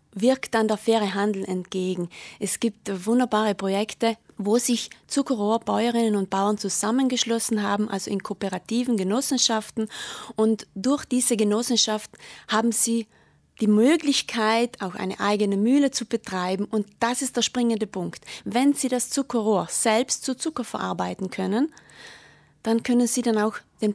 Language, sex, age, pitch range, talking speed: German, female, 20-39, 200-240 Hz, 140 wpm